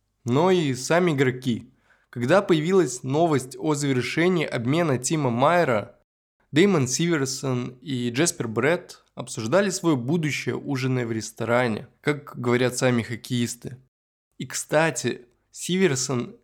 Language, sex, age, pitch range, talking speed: Russian, male, 20-39, 120-165 Hz, 110 wpm